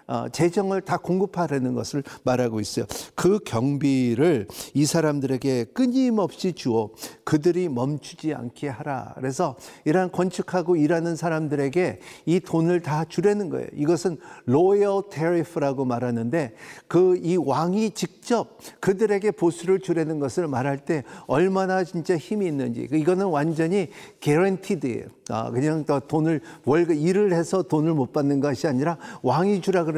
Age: 50-69